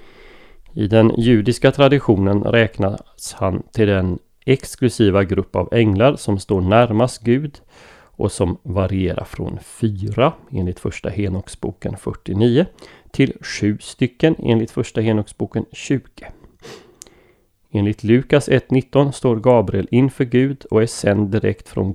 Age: 30-49